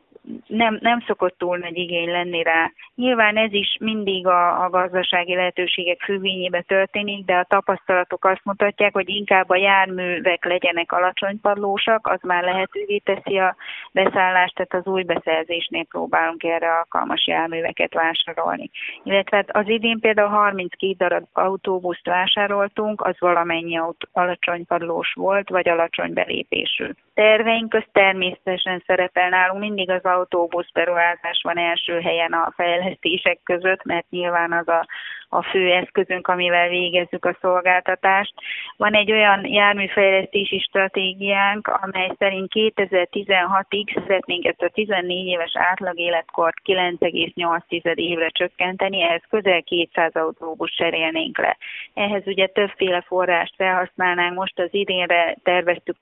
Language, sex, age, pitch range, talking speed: Hungarian, female, 30-49, 175-195 Hz, 125 wpm